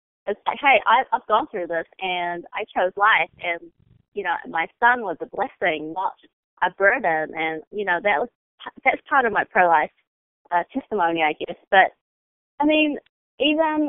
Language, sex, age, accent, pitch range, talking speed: English, female, 20-39, American, 175-240 Hz, 175 wpm